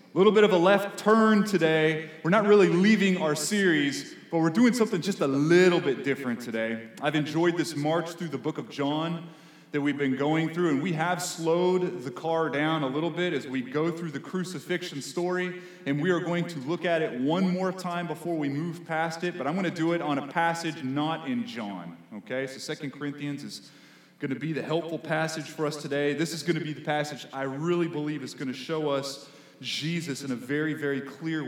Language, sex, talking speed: English, male, 215 wpm